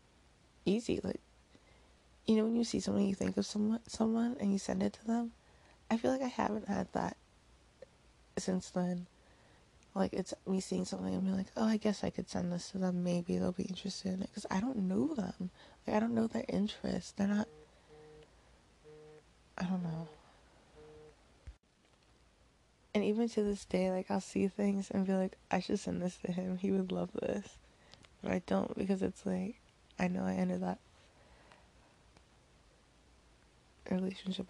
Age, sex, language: 20-39, female, English